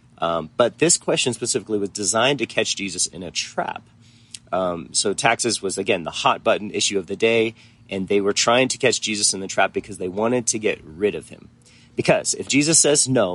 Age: 30-49